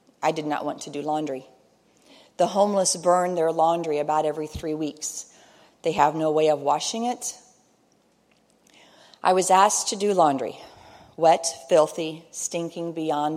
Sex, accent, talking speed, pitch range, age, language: female, American, 150 wpm, 150-180 Hz, 40-59, English